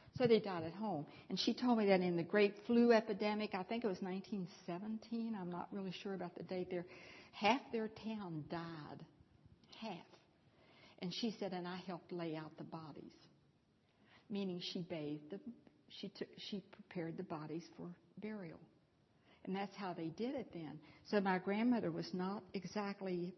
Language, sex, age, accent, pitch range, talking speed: English, female, 60-79, American, 165-195 Hz, 175 wpm